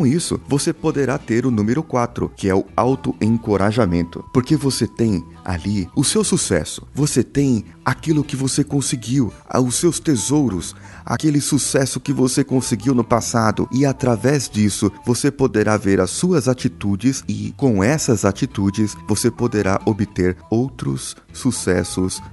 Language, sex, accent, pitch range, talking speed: Portuguese, male, Brazilian, 95-135 Hz, 140 wpm